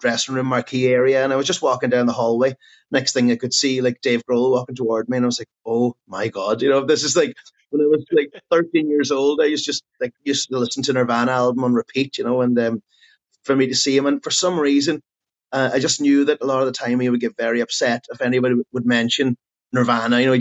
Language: English